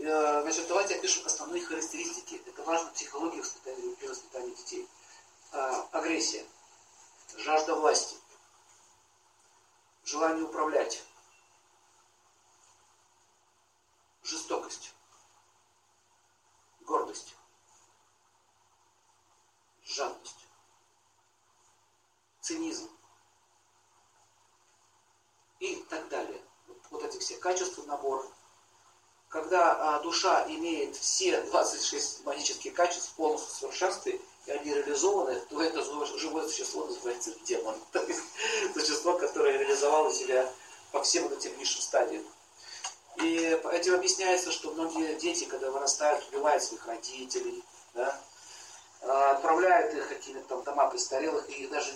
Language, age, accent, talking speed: Russian, 50-69, native, 90 wpm